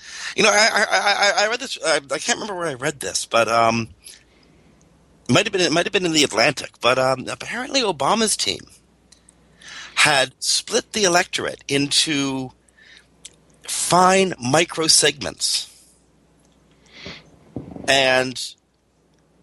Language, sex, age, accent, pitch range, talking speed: English, male, 50-69, American, 115-160 Hz, 125 wpm